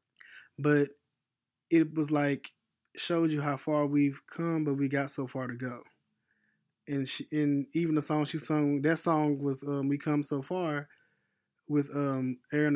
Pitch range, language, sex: 130-150 Hz, English, male